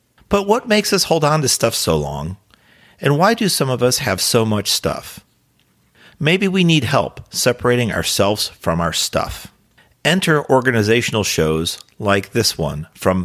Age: 40-59